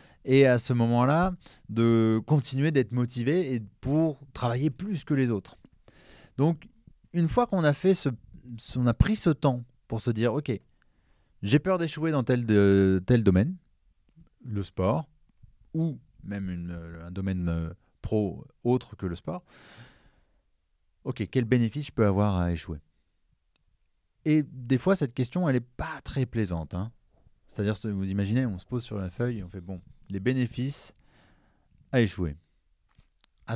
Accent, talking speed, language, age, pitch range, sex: French, 165 wpm, French, 30-49, 95-135 Hz, male